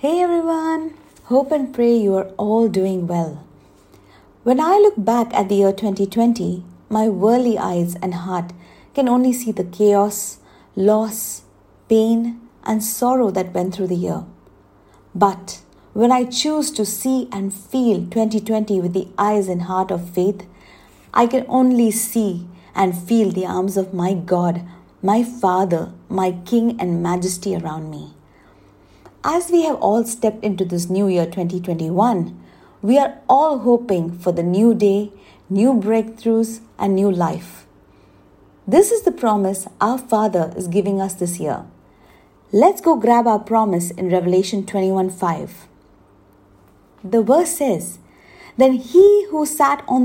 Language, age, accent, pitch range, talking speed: English, 50-69, Indian, 180-235 Hz, 145 wpm